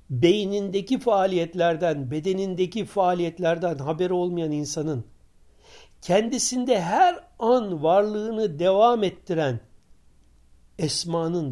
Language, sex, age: Turkish, male, 60-79